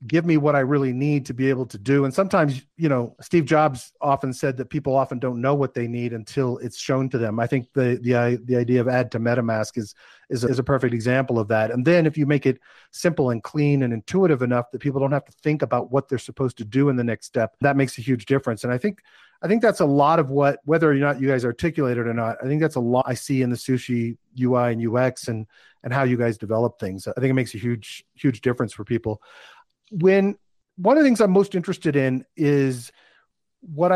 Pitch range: 125-155 Hz